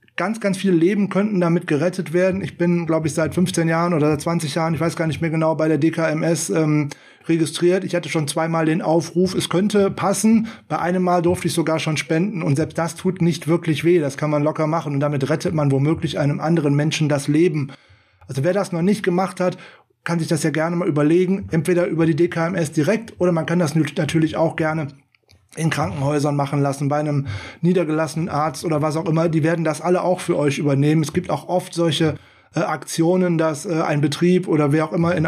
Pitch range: 150-175 Hz